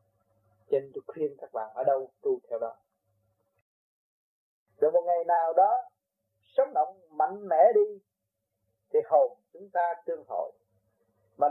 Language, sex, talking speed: Vietnamese, male, 140 wpm